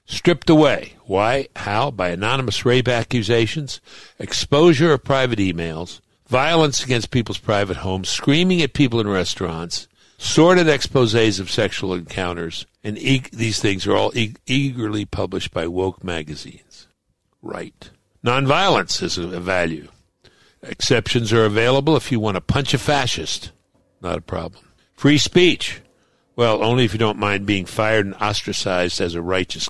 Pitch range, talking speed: 95-140 Hz, 140 wpm